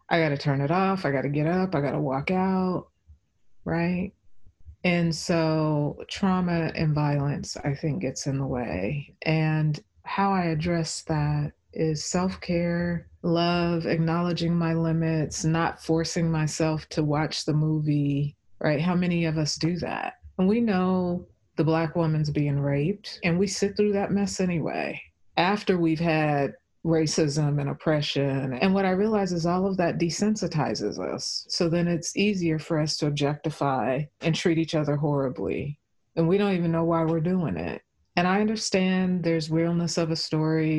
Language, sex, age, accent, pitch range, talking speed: English, female, 30-49, American, 150-175 Hz, 170 wpm